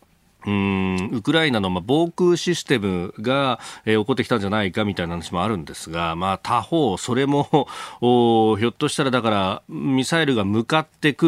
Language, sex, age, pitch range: Japanese, male, 40-59, 95-140 Hz